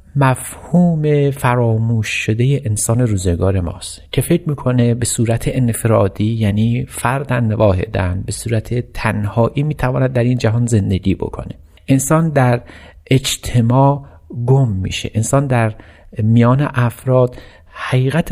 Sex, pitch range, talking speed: male, 110-135 Hz, 110 wpm